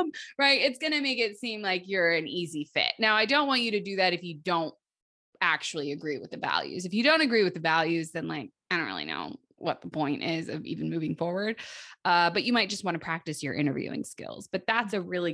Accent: American